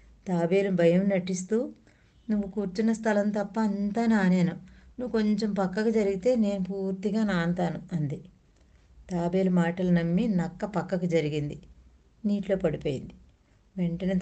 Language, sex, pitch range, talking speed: Telugu, female, 175-210 Hz, 110 wpm